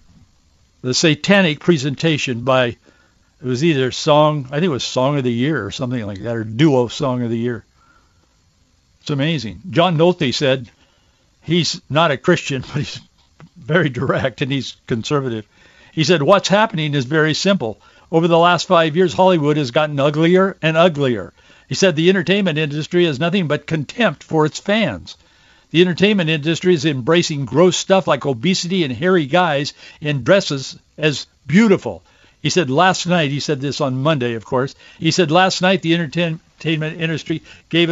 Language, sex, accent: English, male, American